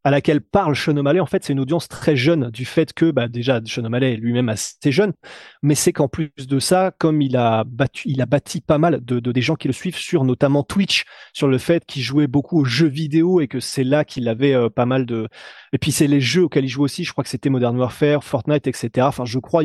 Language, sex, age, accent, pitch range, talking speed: French, male, 30-49, French, 130-165 Hz, 260 wpm